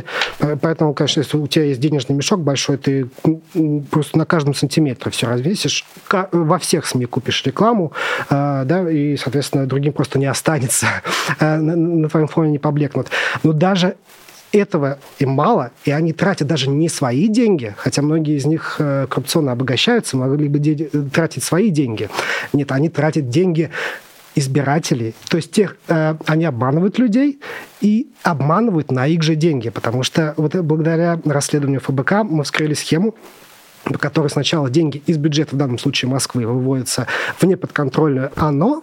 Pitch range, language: 135-165 Hz, Russian